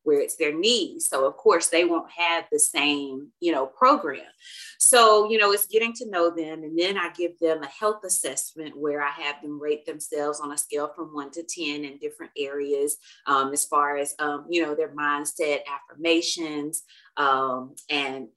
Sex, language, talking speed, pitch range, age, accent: female, English, 195 wpm, 145-215 Hz, 30-49, American